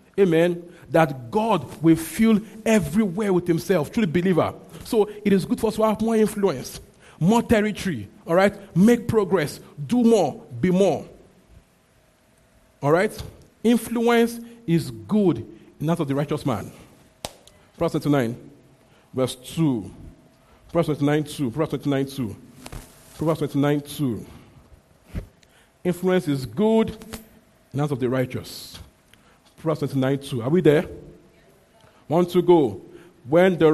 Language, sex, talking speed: English, male, 125 wpm